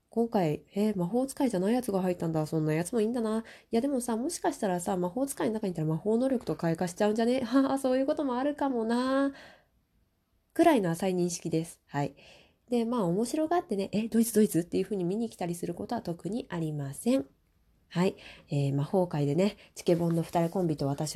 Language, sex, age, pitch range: Japanese, female, 20-39, 165-230 Hz